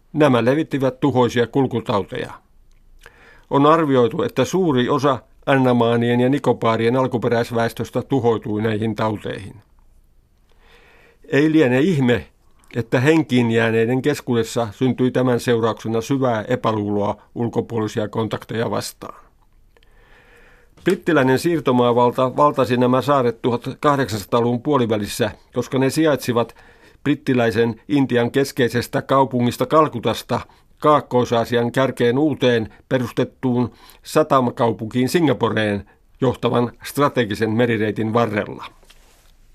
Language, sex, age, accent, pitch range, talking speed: Finnish, male, 50-69, native, 115-135 Hz, 85 wpm